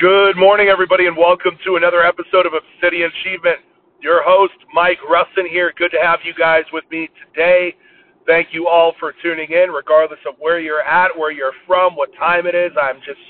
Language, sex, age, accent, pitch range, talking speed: English, male, 40-59, American, 170-220 Hz, 200 wpm